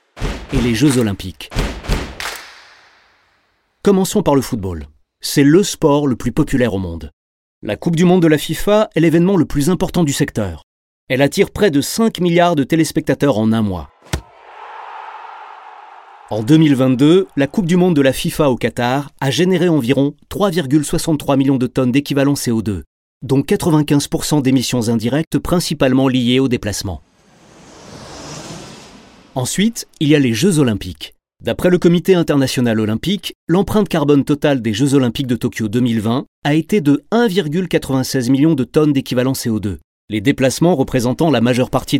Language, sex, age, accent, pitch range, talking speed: French, male, 40-59, French, 125-170 Hz, 150 wpm